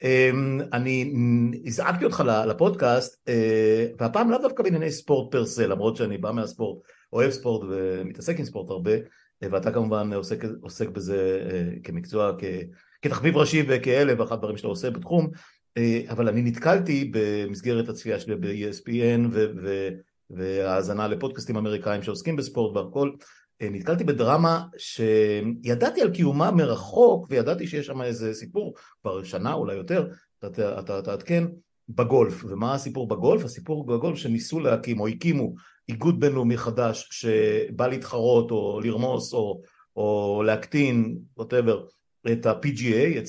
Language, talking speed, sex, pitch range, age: Hebrew, 120 wpm, male, 110-140 Hz, 50-69